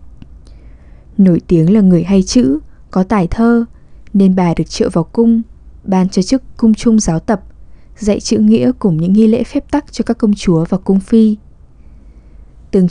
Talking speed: 180 wpm